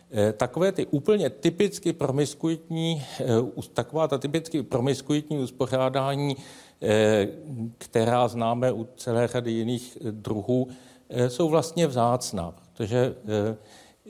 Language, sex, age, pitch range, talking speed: Czech, male, 50-69, 110-130 Hz, 90 wpm